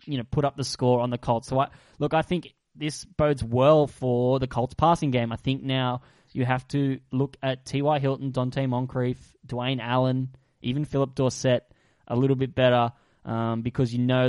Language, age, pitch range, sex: English, 10-29, 120-135 Hz, male